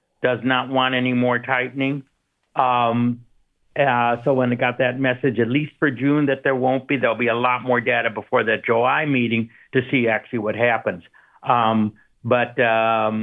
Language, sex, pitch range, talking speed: English, male, 115-135 Hz, 180 wpm